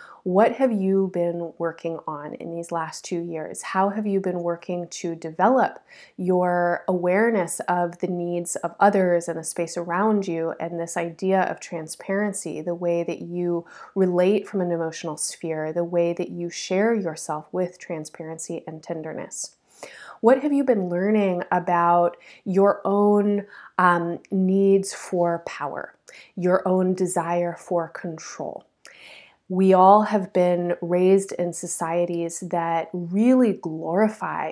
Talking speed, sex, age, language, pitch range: 140 wpm, female, 20-39, English, 170-195 Hz